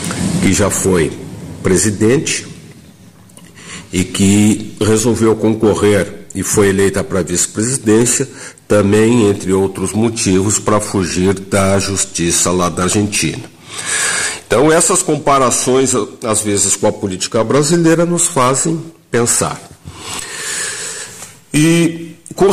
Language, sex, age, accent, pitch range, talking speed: Portuguese, male, 50-69, Brazilian, 100-140 Hz, 100 wpm